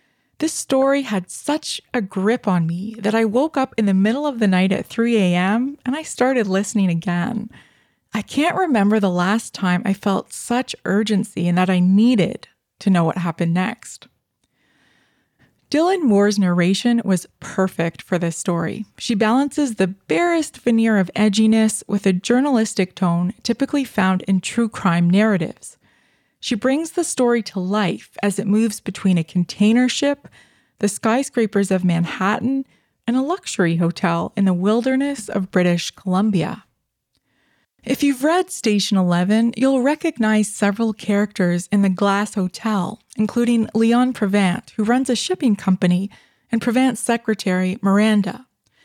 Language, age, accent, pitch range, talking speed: English, 20-39, American, 190-240 Hz, 150 wpm